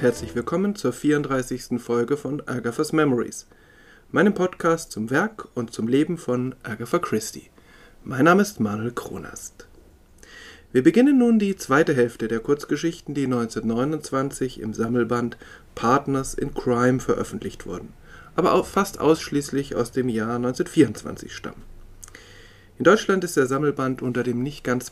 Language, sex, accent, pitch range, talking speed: German, male, German, 115-145 Hz, 140 wpm